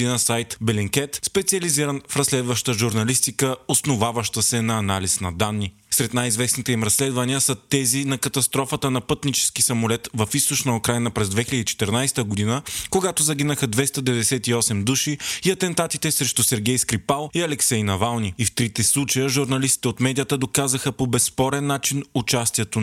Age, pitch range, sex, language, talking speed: 20-39, 115-135 Hz, male, Bulgarian, 140 wpm